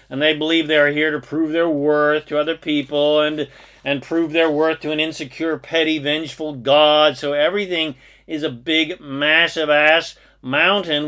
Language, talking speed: English, 170 wpm